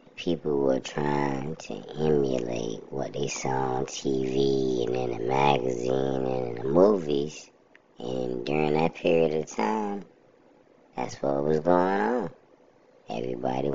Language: English